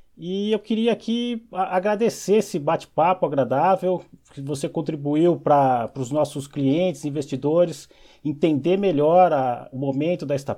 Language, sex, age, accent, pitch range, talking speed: Portuguese, male, 30-49, Brazilian, 135-170 Hz, 120 wpm